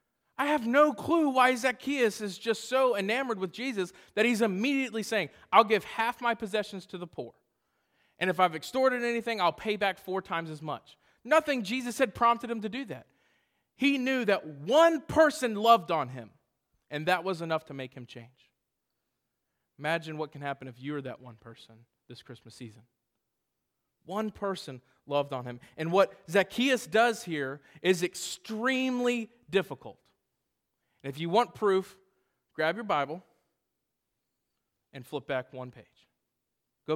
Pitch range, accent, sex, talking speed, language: 145-225 Hz, American, male, 160 wpm, English